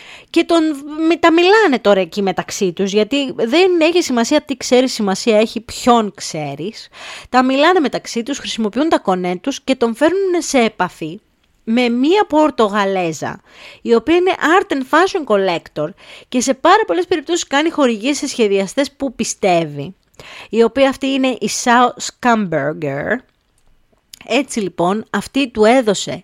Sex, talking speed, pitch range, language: female, 145 wpm, 185-290 Hz, Greek